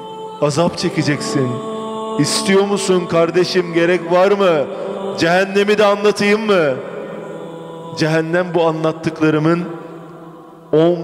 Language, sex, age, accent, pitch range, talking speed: Turkish, male, 30-49, native, 155-200 Hz, 85 wpm